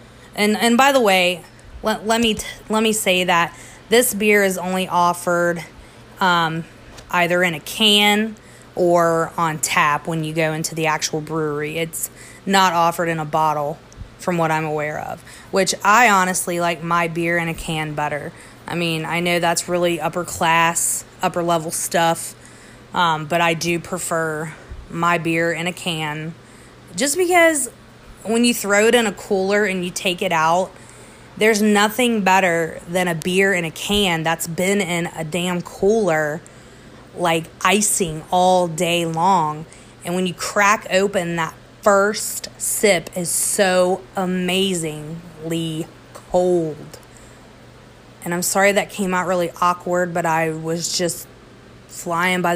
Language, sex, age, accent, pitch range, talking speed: English, female, 20-39, American, 160-190 Hz, 155 wpm